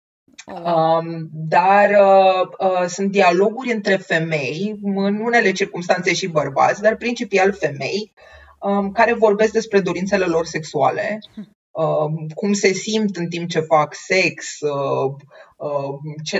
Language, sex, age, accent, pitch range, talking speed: Romanian, female, 30-49, native, 155-205 Hz, 100 wpm